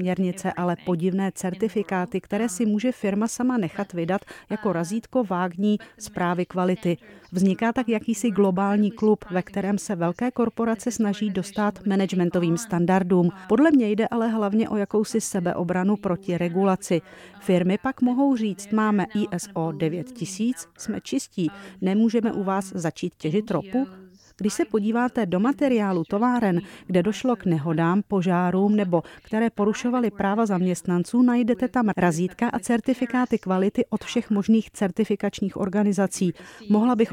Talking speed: 135 wpm